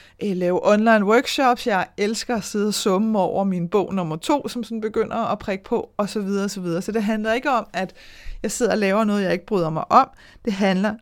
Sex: female